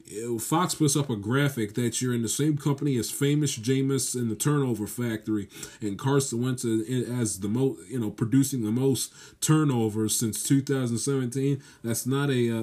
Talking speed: 150 wpm